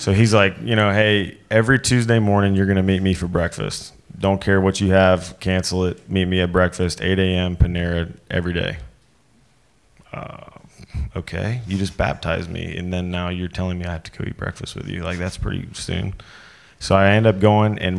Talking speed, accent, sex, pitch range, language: 205 wpm, American, male, 85-95 Hz, English